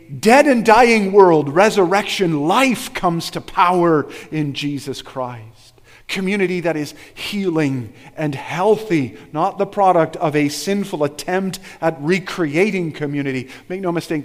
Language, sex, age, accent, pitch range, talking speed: English, male, 40-59, American, 135-180 Hz, 130 wpm